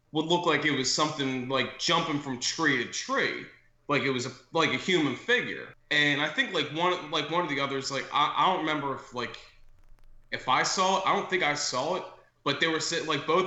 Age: 20-39